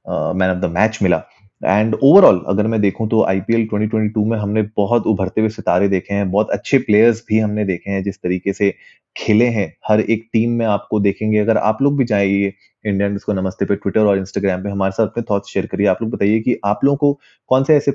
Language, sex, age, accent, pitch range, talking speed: Hindi, male, 30-49, native, 95-110 Hz, 215 wpm